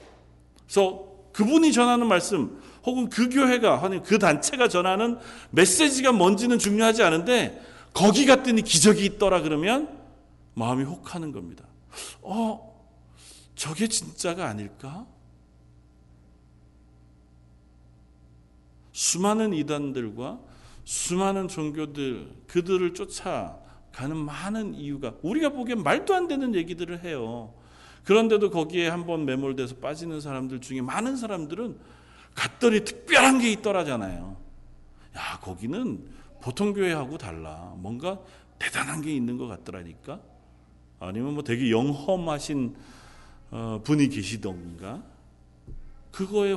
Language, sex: Korean, male